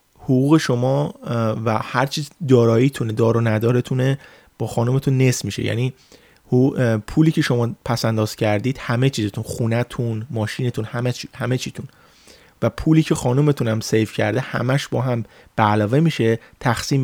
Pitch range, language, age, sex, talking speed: 110-135 Hz, Persian, 30-49, male, 140 wpm